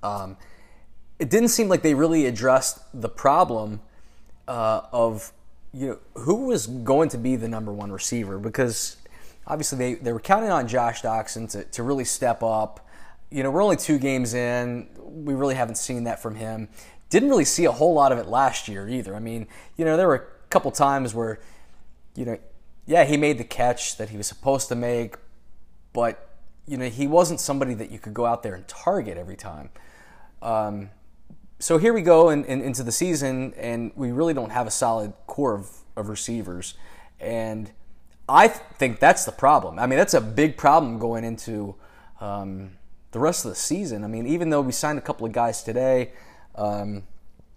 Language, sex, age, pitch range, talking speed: English, male, 20-39, 105-130 Hz, 195 wpm